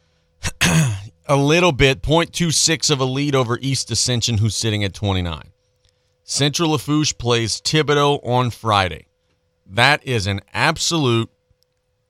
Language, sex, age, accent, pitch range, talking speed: English, male, 40-59, American, 100-125 Hz, 120 wpm